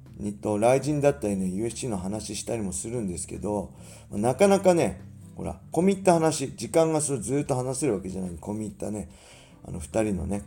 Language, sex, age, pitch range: Japanese, male, 40-59, 95-120 Hz